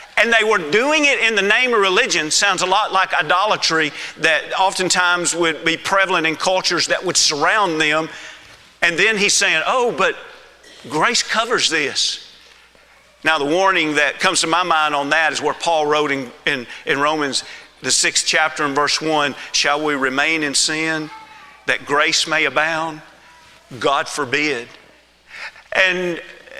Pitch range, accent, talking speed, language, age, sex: 155-195 Hz, American, 160 wpm, English, 50-69, male